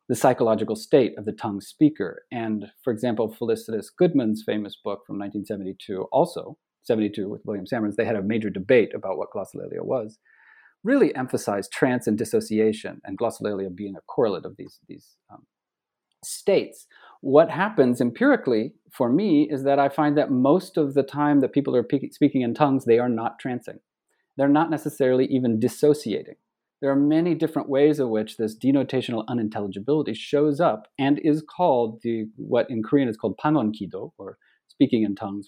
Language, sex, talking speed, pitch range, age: English, male, 170 wpm, 110-150 Hz, 40-59